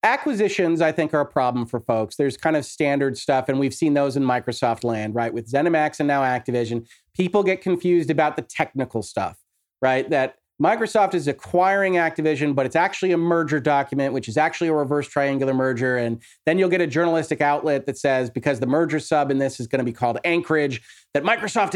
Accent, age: American, 30-49